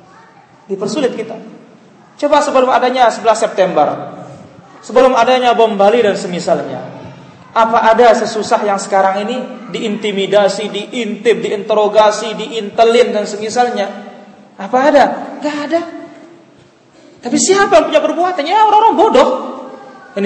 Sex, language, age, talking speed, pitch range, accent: male, Indonesian, 30-49, 110 wpm, 185-245 Hz, native